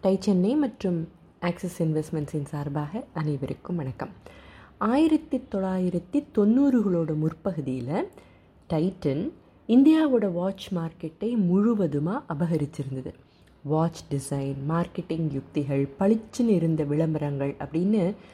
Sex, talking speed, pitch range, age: female, 80 wpm, 160-210 Hz, 20-39